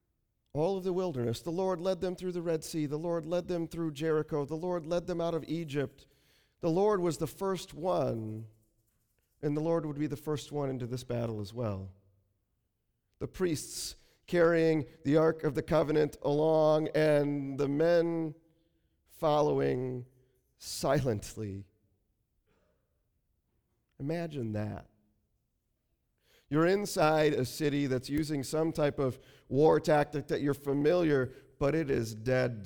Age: 40-59